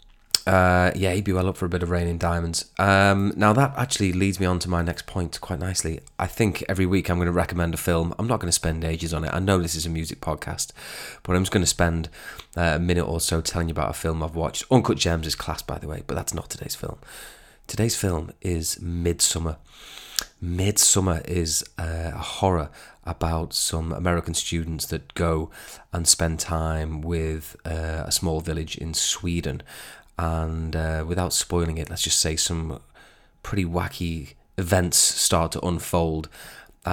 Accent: British